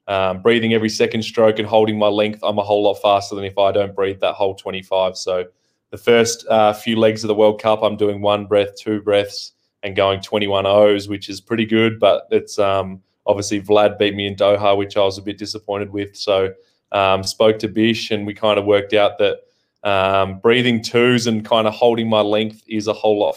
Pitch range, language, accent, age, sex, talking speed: 100-110 Hz, English, Australian, 20-39, male, 225 wpm